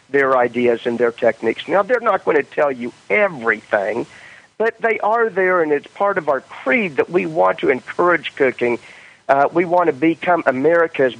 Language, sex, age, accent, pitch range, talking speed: English, male, 50-69, American, 125-160 Hz, 190 wpm